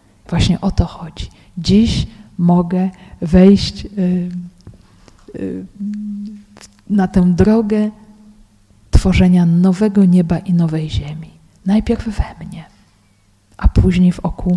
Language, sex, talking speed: Polish, female, 90 wpm